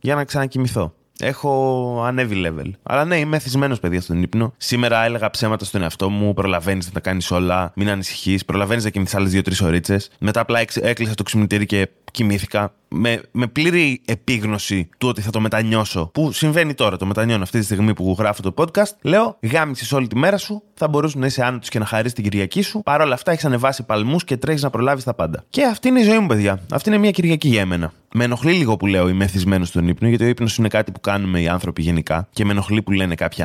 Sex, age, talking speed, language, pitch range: male, 20-39, 225 wpm, Greek, 100-135 Hz